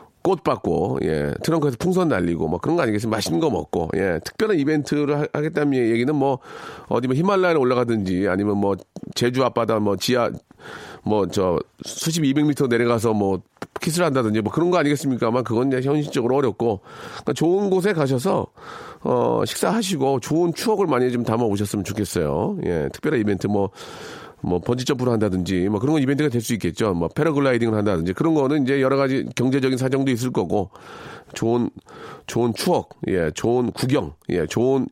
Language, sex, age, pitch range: Korean, male, 40-59, 115-175 Hz